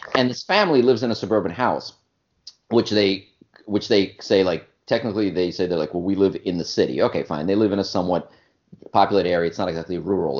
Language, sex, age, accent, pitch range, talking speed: English, male, 40-59, American, 95-115 Hz, 220 wpm